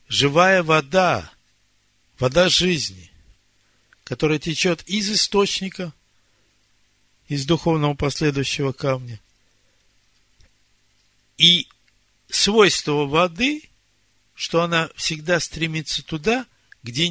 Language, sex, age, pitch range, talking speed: Russian, male, 60-79, 110-160 Hz, 75 wpm